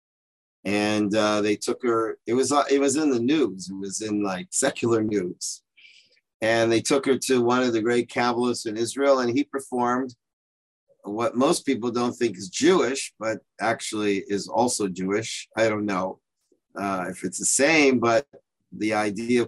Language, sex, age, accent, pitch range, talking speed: English, male, 50-69, American, 105-130 Hz, 175 wpm